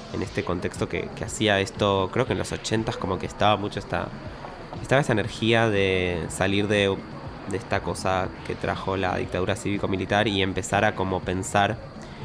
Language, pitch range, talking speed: Spanish, 95-110 Hz, 175 wpm